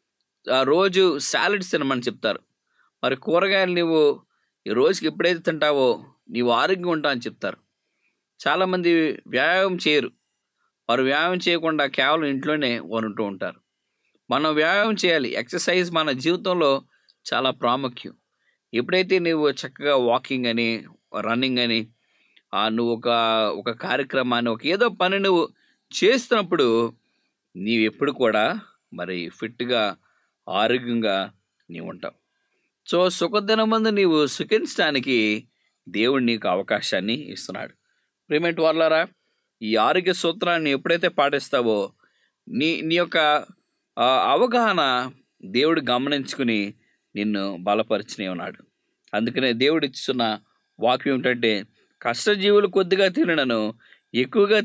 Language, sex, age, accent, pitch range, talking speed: English, male, 20-39, Indian, 115-180 Hz, 80 wpm